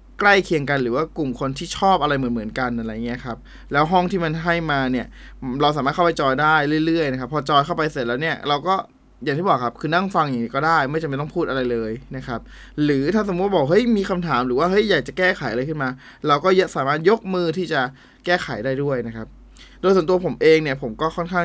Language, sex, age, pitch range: Thai, male, 20-39, 130-175 Hz